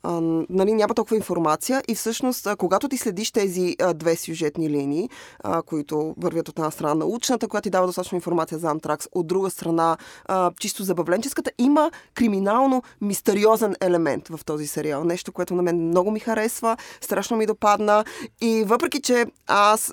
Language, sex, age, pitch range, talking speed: Bulgarian, female, 20-39, 170-215 Hz, 165 wpm